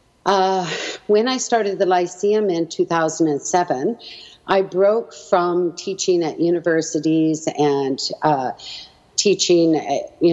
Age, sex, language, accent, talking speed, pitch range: 50-69, female, English, American, 110 wpm, 155-190 Hz